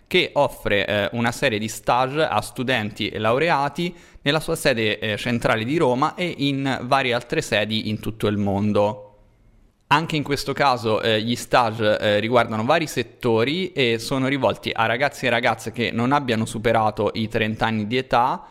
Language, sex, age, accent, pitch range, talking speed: Italian, male, 20-39, native, 110-140 Hz, 175 wpm